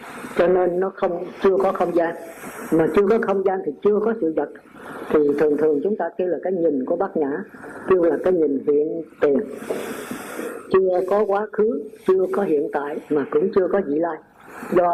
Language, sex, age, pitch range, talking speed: Vietnamese, female, 50-69, 170-215 Hz, 205 wpm